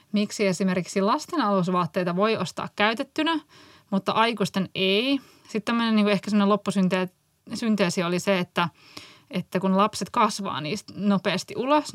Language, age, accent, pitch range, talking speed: Finnish, 20-39, native, 190-220 Hz, 130 wpm